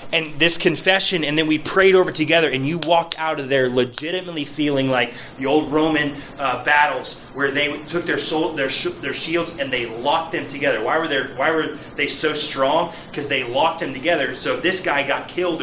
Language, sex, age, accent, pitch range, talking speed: English, male, 30-49, American, 135-170 Hz, 215 wpm